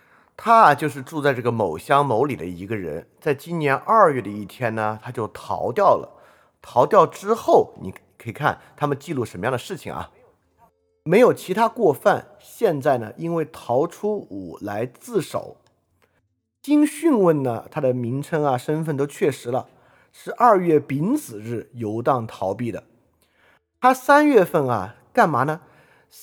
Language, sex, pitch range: Chinese, male, 110-160 Hz